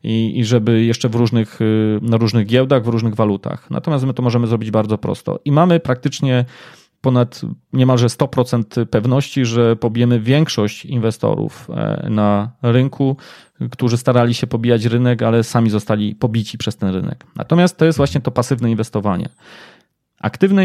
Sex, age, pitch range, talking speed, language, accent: male, 30-49, 115-135 Hz, 140 wpm, Polish, native